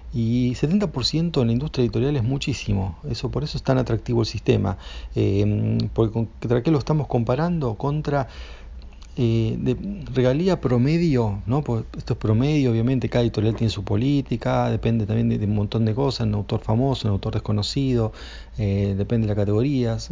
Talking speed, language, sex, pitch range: 170 wpm, Spanish, male, 110-135 Hz